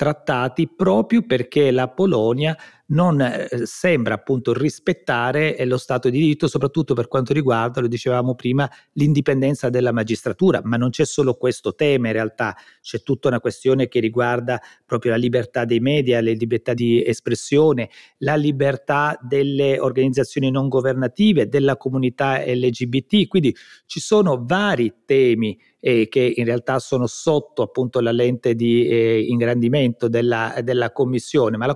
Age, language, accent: 40-59, Italian, native